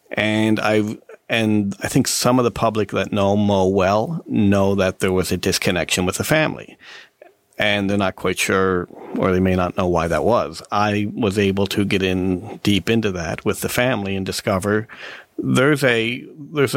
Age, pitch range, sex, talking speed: 40-59, 95-110 Hz, male, 180 wpm